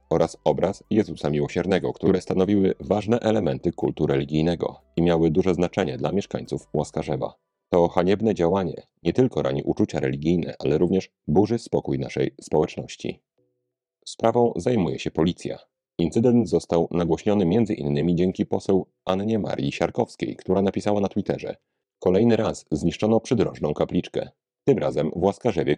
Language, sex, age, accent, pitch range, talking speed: Polish, male, 40-59, native, 80-110 Hz, 135 wpm